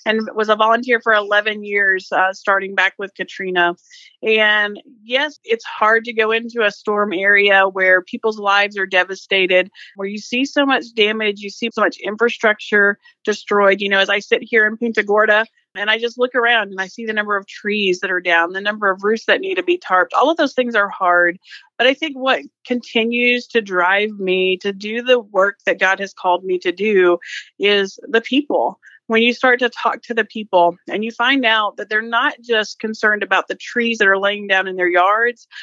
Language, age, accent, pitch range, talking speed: English, 40-59, American, 195-240 Hz, 215 wpm